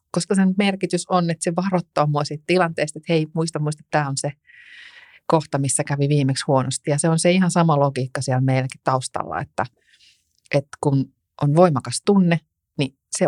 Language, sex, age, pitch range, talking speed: Finnish, female, 30-49, 130-155 Hz, 180 wpm